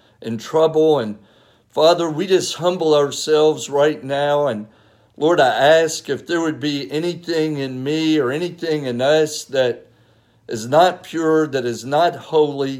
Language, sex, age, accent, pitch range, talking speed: English, male, 50-69, American, 130-160 Hz, 155 wpm